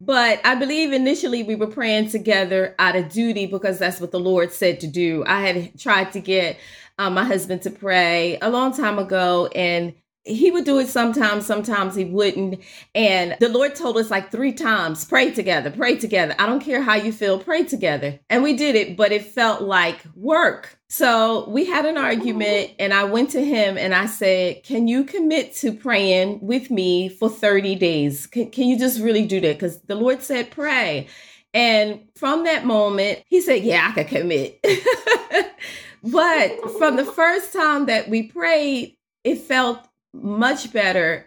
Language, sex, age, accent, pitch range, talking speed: English, female, 30-49, American, 195-270 Hz, 185 wpm